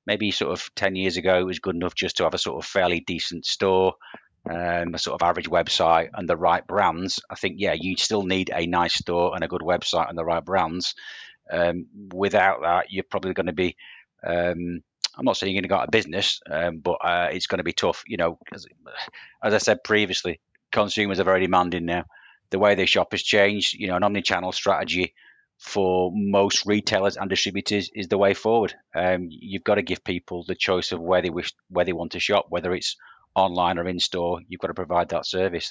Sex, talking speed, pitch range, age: male, 225 wpm, 85-95 Hz, 30-49